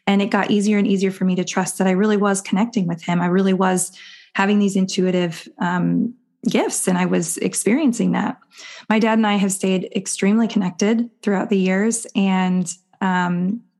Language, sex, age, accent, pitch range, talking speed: English, female, 20-39, American, 190-230 Hz, 185 wpm